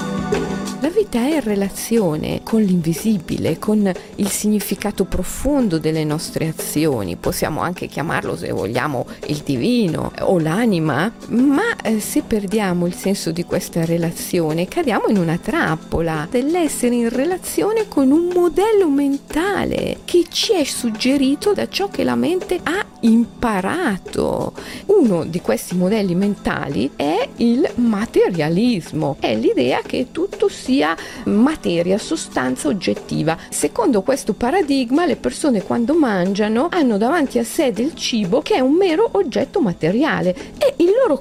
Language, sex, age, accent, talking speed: Italian, female, 40-59, native, 135 wpm